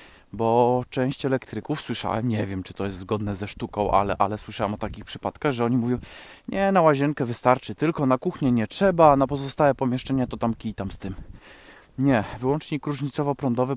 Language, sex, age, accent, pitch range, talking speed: Polish, male, 20-39, native, 115-135 Hz, 185 wpm